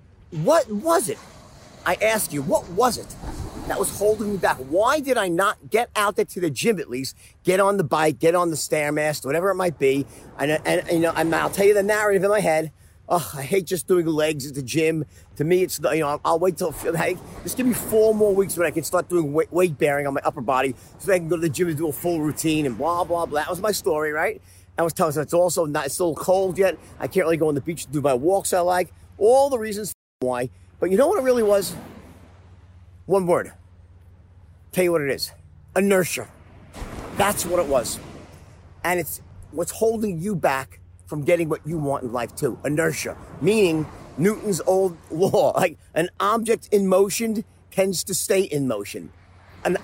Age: 40-59